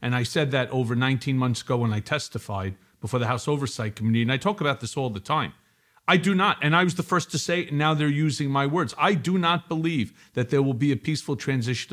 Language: English